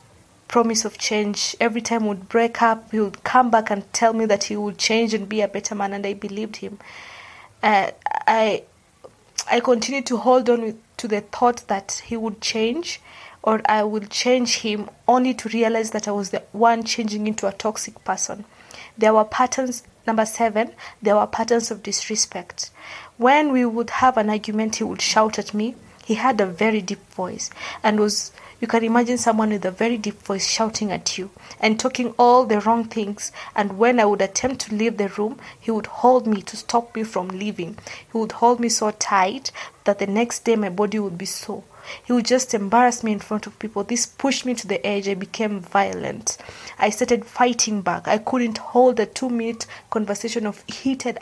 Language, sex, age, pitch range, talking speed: English, female, 20-39, 210-235 Hz, 200 wpm